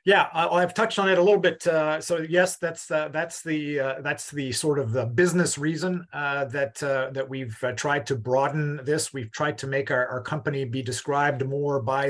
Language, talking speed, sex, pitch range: English, 220 wpm, male, 135-155 Hz